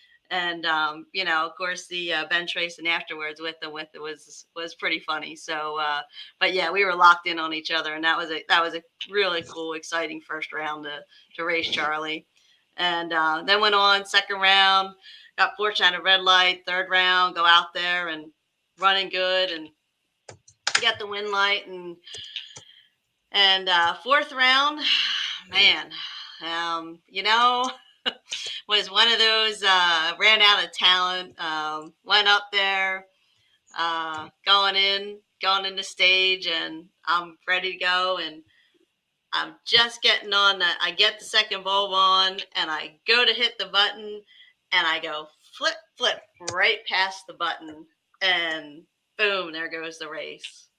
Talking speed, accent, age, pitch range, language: 165 wpm, American, 40-59, 160-200 Hz, English